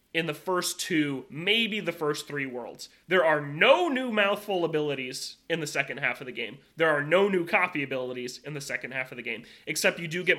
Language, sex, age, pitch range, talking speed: English, male, 20-39, 140-185 Hz, 225 wpm